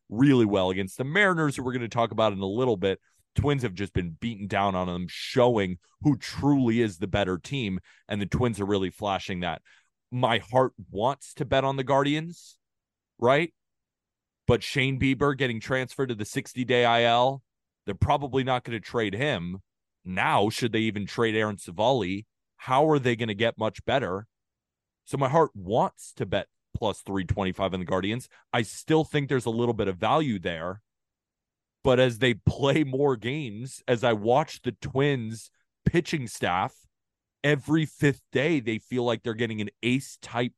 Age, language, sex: 30-49, English, male